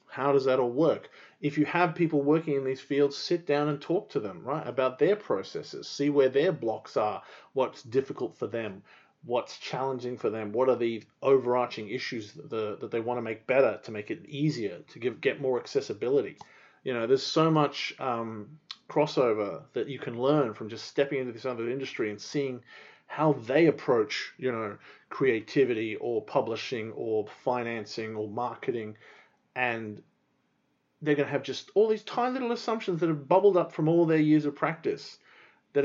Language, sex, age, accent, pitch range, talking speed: English, male, 30-49, Australian, 120-155 Hz, 185 wpm